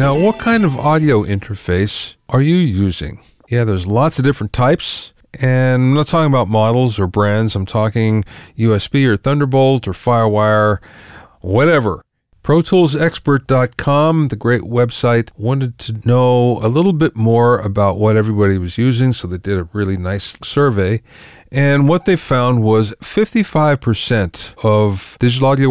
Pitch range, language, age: 105-135 Hz, English, 40-59